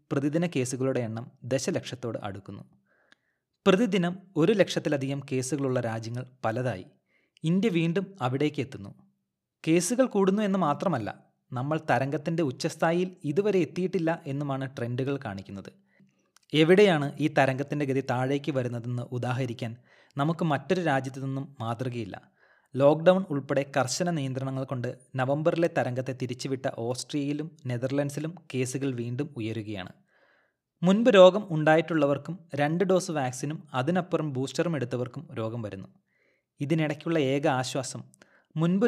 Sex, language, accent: male, Malayalam, native